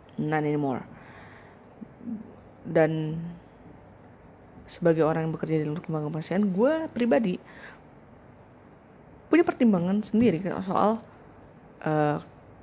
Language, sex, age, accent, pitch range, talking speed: Indonesian, female, 20-39, native, 155-225 Hz, 85 wpm